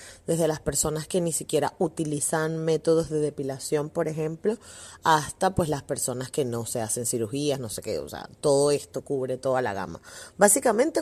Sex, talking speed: female, 180 wpm